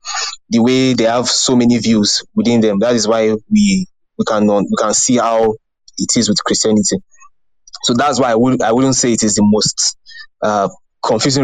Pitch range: 105-125 Hz